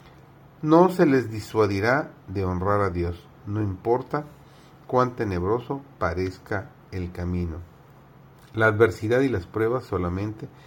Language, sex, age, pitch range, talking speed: Spanish, male, 40-59, 95-135 Hz, 120 wpm